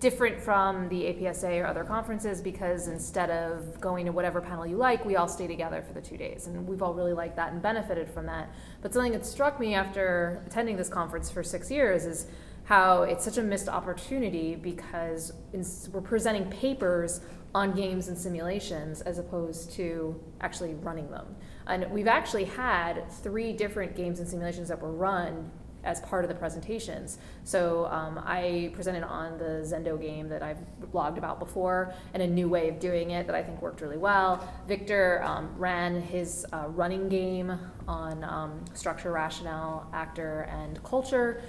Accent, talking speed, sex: American, 180 wpm, female